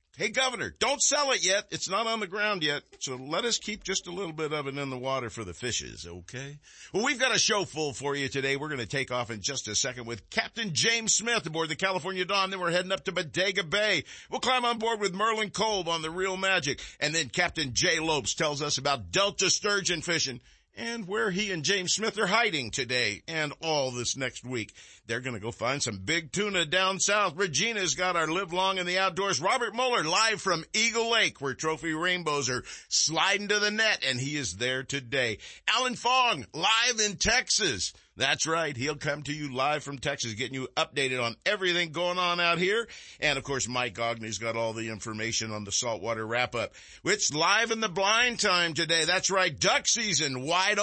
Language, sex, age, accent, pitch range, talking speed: English, male, 50-69, American, 135-205 Hz, 215 wpm